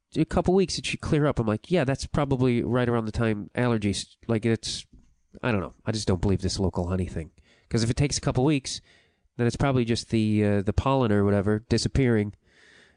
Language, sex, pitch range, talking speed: English, male, 100-130 Hz, 230 wpm